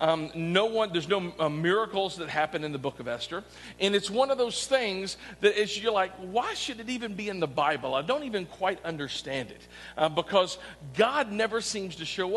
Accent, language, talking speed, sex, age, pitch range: American, English, 220 wpm, male, 50-69, 165-230 Hz